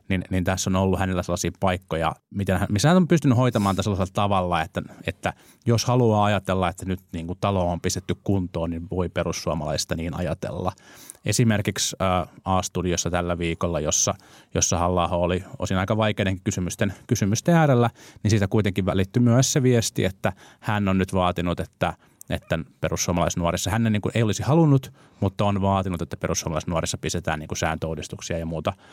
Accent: native